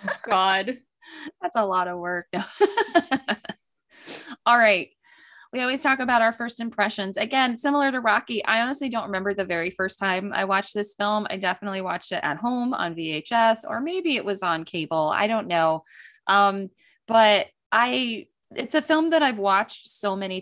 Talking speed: 175 wpm